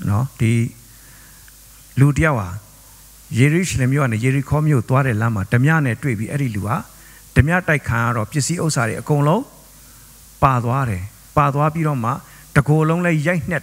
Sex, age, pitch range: male, 50-69, 115-150 Hz